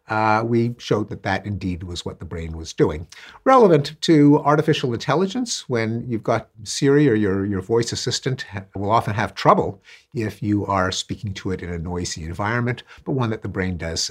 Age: 60-79